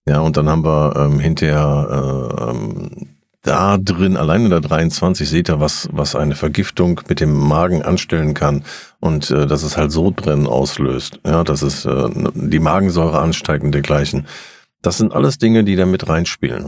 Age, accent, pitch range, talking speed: 50-69, German, 75-90 Hz, 180 wpm